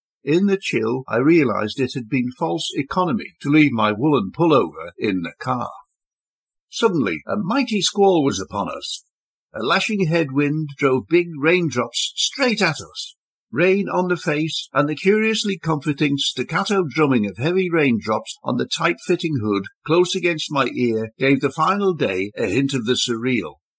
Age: 60-79